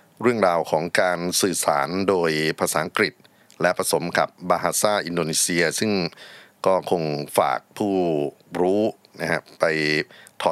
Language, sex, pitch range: Thai, male, 80-95 Hz